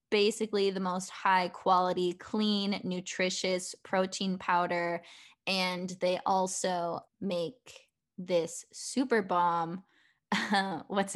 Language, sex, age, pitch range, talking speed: English, female, 10-29, 180-225 Hz, 95 wpm